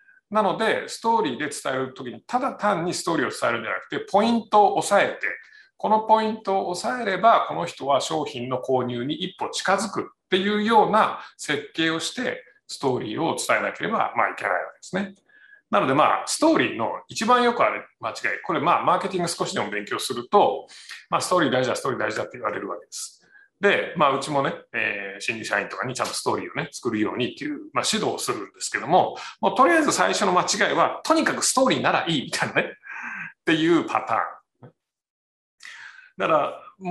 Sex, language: male, Japanese